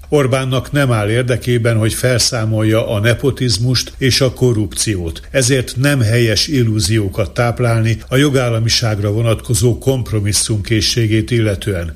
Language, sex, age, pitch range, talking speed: Hungarian, male, 60-79, 105-125 Hz, 105 wpm